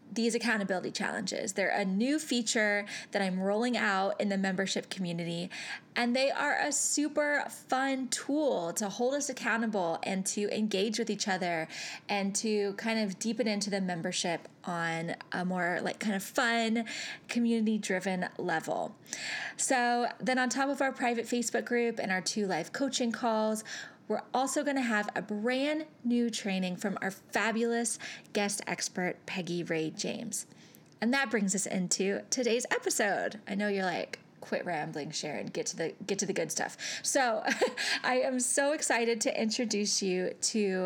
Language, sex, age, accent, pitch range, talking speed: English, female, 20-39, American, 190-240 Hz, 160 wpm